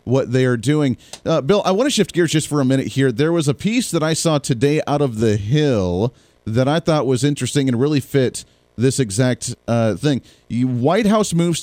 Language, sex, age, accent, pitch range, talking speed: English, male, 40-59, American, 135-185 Hz, 220 wpm